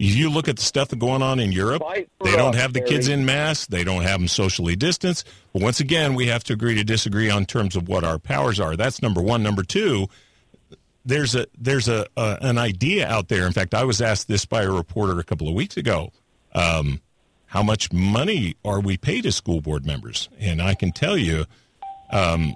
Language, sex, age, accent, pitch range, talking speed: English, male, 50-69, American, 90-125 Hz, 220 wpm